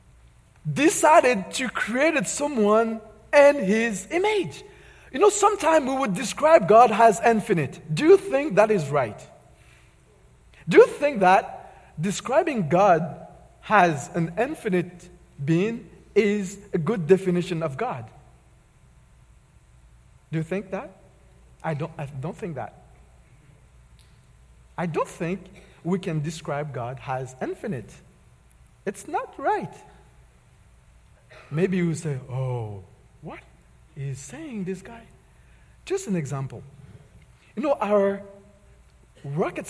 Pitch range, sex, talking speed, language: 130-205 Hz, male, 115 wpm, English